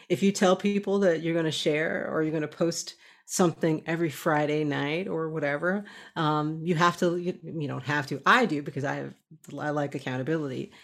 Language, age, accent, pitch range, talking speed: English, 40-59, American, 150-180 Hz, 195 wpm